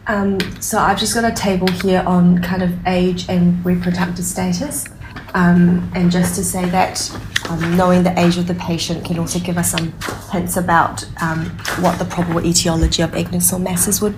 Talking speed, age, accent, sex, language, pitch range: 185 wpm, 20-39, Australian, female, English, 165-185 Hz